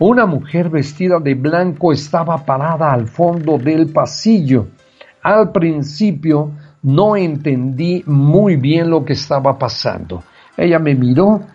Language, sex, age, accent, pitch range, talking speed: English, male, 50-69, Mexican, 135-170 Hz, 125 wpm